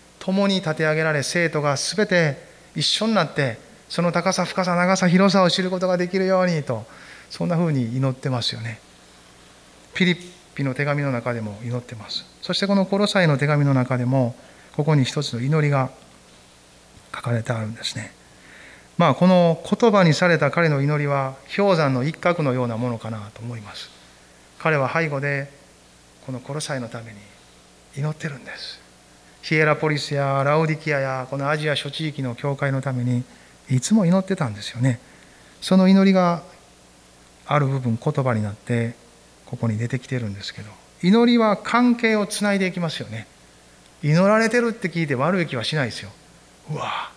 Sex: male